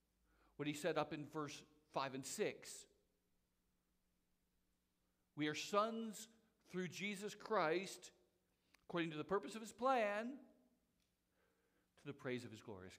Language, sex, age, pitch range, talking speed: English, male, 50-69, 130-190 Hz, 130 wpm